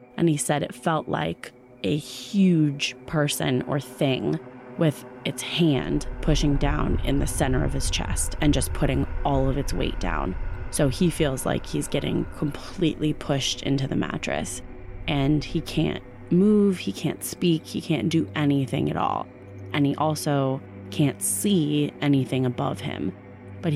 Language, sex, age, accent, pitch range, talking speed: English, female, 20-39, American, 125-150 Hz, 160 wpm